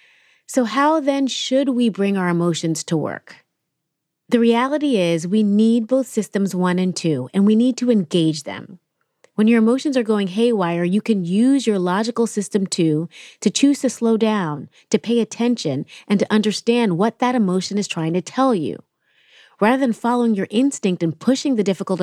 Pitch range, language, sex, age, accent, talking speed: 180-240 Hz, English, female, 30-49, American, 185 wpm